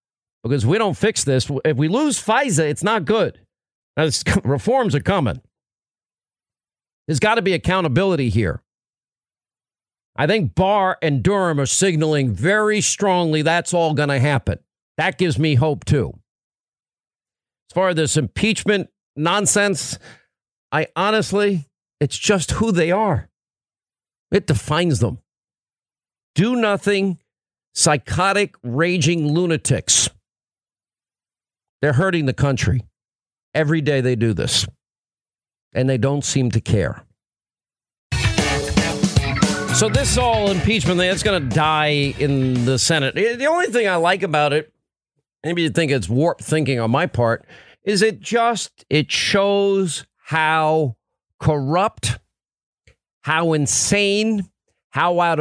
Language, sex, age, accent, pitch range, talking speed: English, male, 50-69, American, 130-190 Hz, 125 wpm